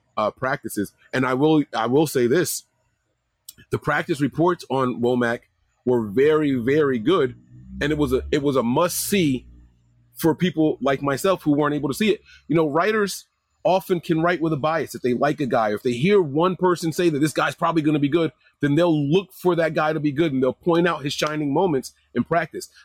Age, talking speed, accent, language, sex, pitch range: 30-49, 215 wpm, American, English, male, 125-165 Hz